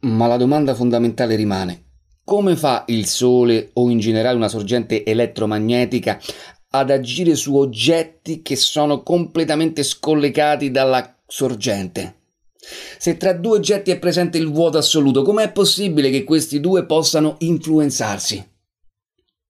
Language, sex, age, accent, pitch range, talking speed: Italian, male, 30-49, native, 110-155 Hz, 125 wpm